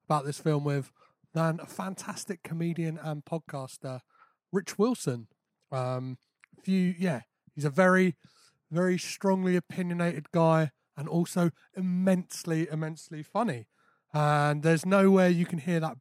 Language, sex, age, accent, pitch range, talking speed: English, male, 30-49, British, 145-190 Hz, 125 wpm